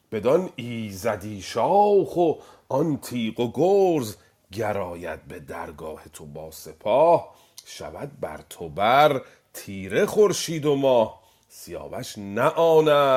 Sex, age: male, 40-59